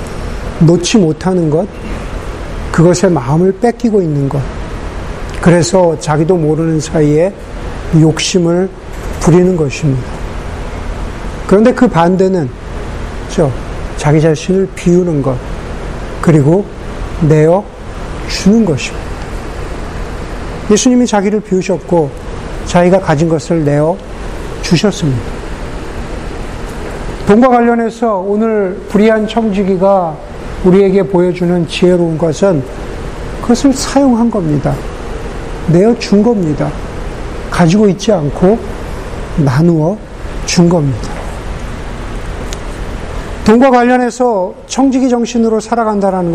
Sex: male